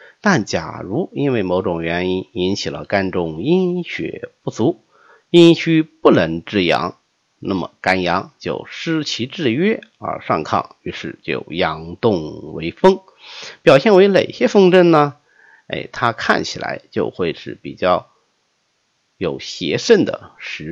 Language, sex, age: Chinese, male, 50-69